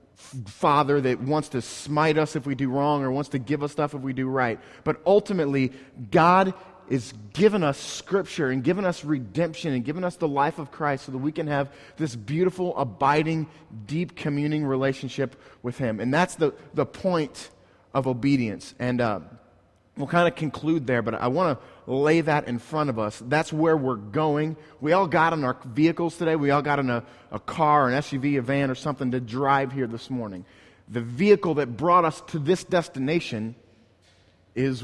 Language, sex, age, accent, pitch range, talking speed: English, male, 30-49, American, 125-155 Hz, 195 wpm